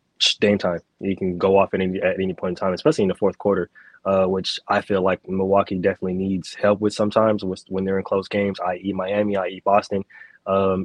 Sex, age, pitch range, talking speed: male, 20-39, 90-100 Hz, 215 wpm